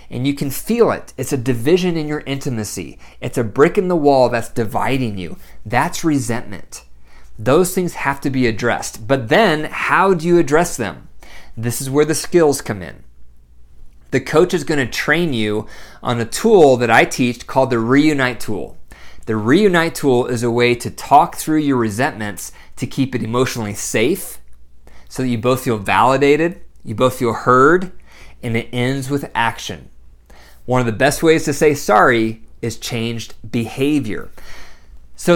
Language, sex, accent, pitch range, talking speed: English, male, American, 110-150 Hz, 170 wpm